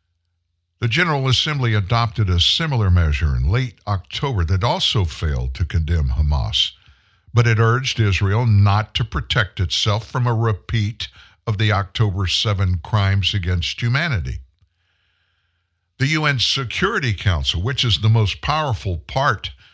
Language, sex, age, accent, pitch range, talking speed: English, male, 60-79, American, 95-130 Hz, 135 wpm